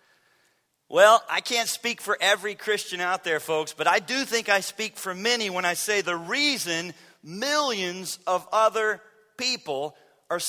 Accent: American